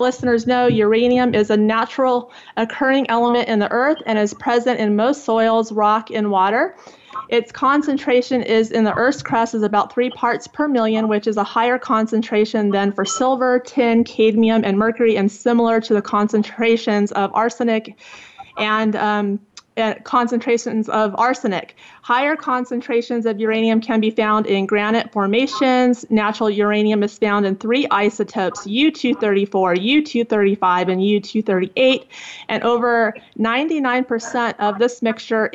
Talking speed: 140 wpm